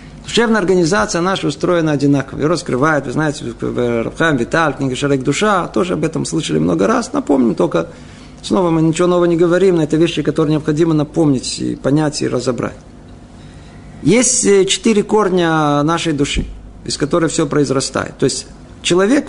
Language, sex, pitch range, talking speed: Russian, male, 140-190 Hz, 150 wpm